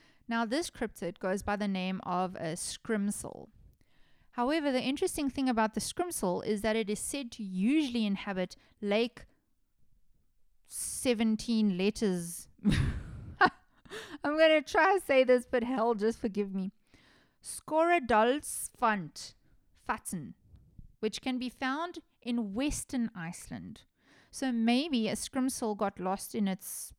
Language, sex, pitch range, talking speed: English, female, 185-240 Hz, 125 wpm